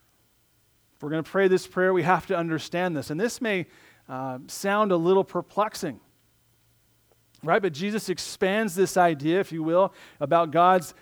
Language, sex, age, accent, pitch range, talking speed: English, male, 40-59, American, 155-190 Hz, 170 wpm